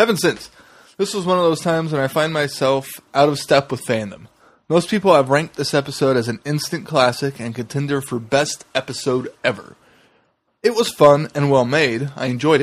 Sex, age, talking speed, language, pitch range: male, 20-39, 195 wpm, English, 130-160 Hz